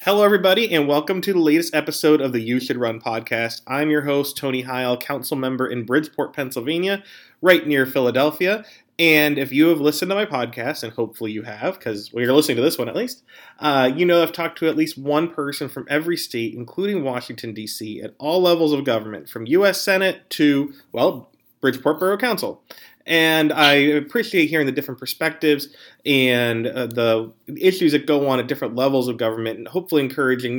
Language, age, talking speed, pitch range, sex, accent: English, 30-49, 195 wpm, 125-160 Hz, male, American